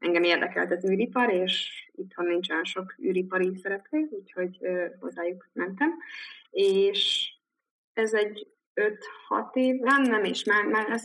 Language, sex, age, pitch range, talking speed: Hungarian, female, 20-39, 180-260 Hz, 130 wpm